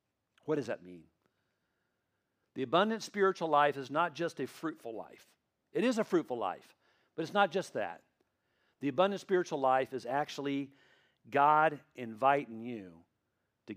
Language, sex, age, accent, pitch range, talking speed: English, male, 50-69, American, 140-195 Hz, 150 wpm